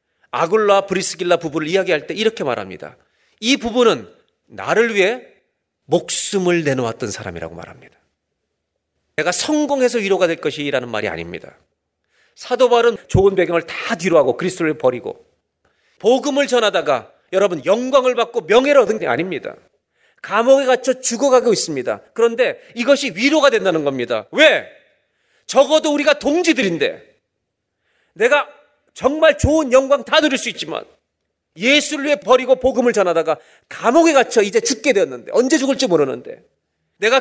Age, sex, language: 40-59, male, Korean